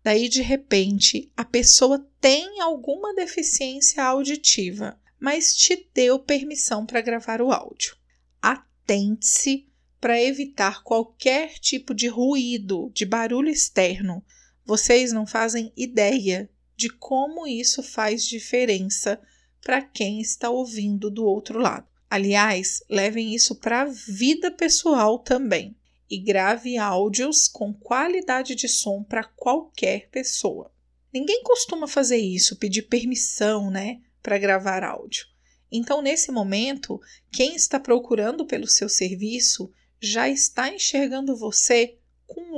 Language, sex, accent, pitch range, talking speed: Portuguese, female, Brazilian, 210-275 Hz, 120 wpm